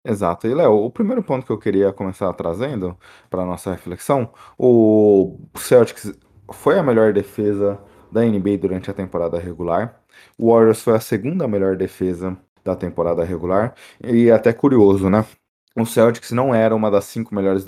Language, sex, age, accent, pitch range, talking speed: Portuguese, male, 20-39, Brazilian, 95-110 Hz, 165 wpm